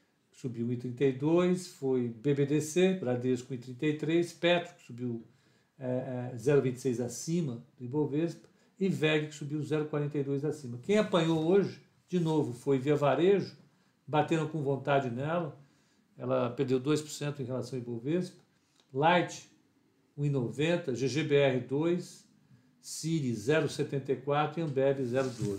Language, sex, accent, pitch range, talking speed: Portuguese, male, Brazilian, 125-160 Hz, 110 wpm